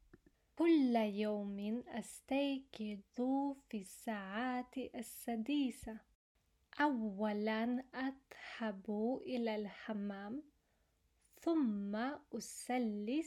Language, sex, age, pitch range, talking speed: Arabic, female, 20-39, 215-265 Hz, 55 wpm